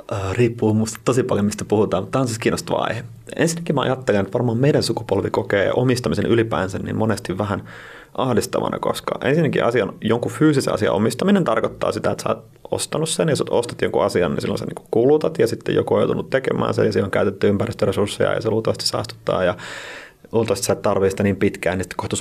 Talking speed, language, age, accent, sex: 205 wpm, Finnish, 30-49, native, male